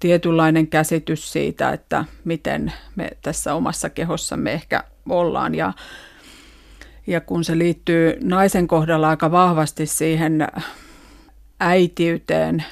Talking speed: 105 wpm